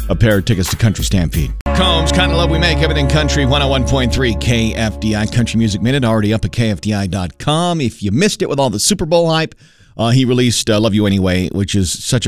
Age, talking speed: 40-59, 215 wpm